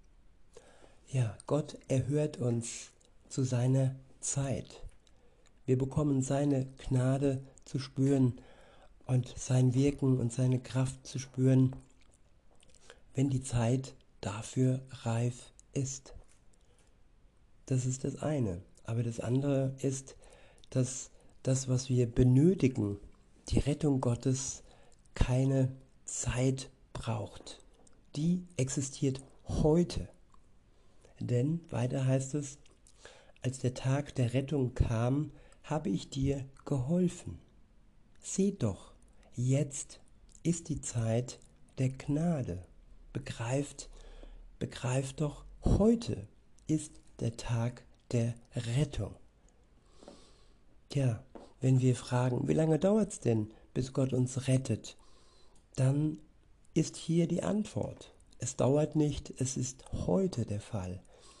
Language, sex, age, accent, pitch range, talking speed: German, male, 60-79, German, 120-140 Hz, 105 wpm